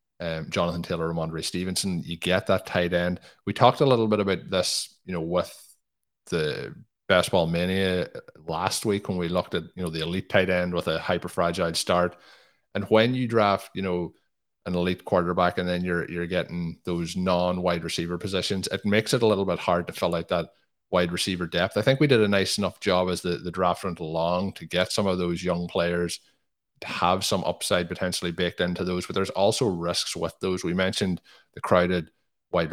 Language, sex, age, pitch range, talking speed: English, male, 30-49, 85-95 Hz, 205 wpm